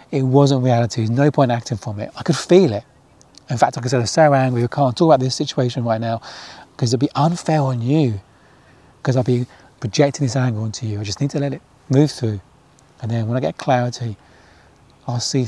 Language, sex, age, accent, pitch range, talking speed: English, male, 30-49, British, 115-140 Hz, 240 wpm